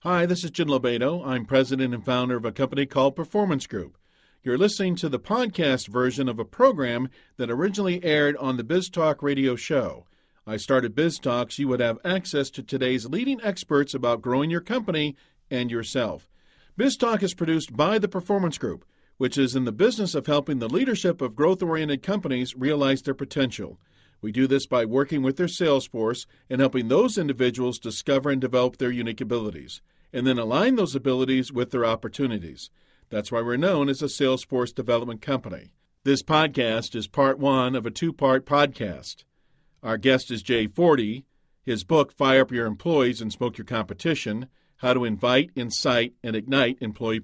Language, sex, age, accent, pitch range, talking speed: English, male, 50-69, American, 120-155 Hz, 180 wpm